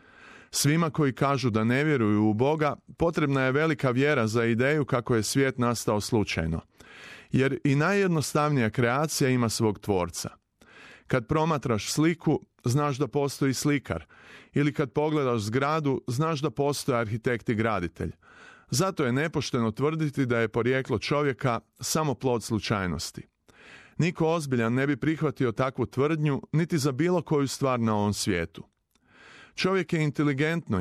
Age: 30-49